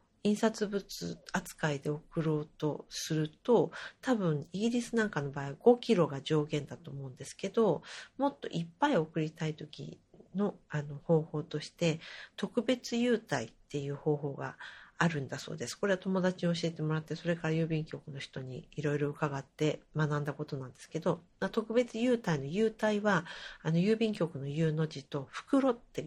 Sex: female